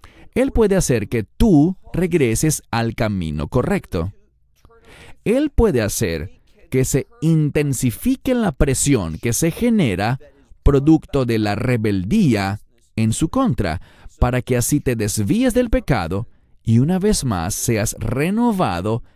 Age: 40-59